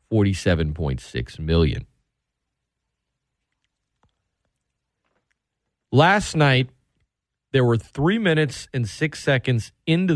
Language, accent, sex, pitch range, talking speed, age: English, American, male, 100-140 Hz, 70 wpm, 40-59